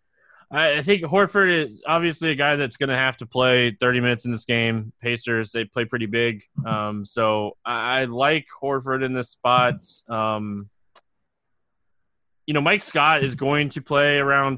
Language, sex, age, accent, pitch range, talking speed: English, male, 20-39, American, 115-140 Hz, 170 wpm